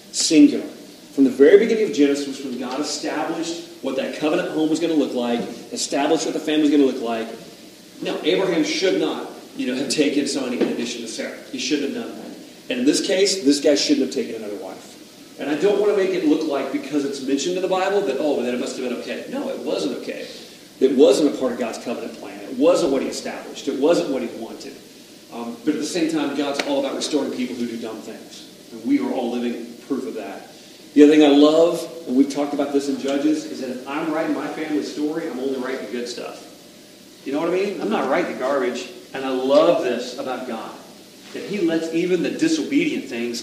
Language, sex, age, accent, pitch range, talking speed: English, male, 40-59, American, 135-170 Hz, 240 wpm